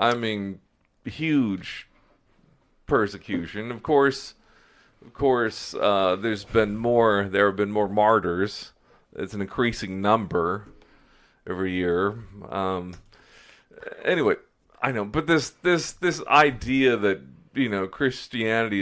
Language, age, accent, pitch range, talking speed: English, 40-59, American, 95-115 Hz, 115 wpm